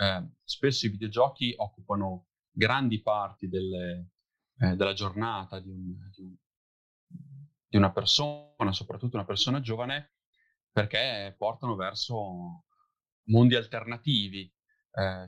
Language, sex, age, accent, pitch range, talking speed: Italian, male, 30-49, native, 95-120 Hz, 110 wpm